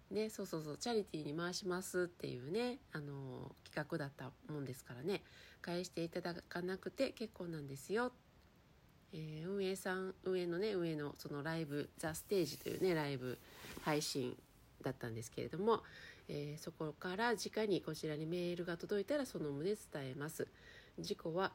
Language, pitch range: Japanese, 155-195 Hz